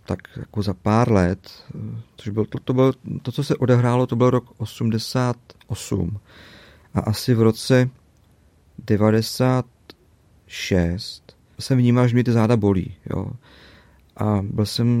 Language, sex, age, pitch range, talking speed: Czech, male, 40-59, 100-115 Hz, 130 wpm